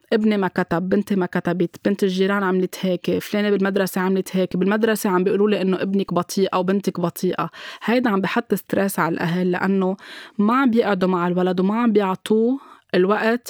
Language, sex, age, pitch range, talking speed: Arabic, female, 20-39, 180-215 Hz, 180 wpm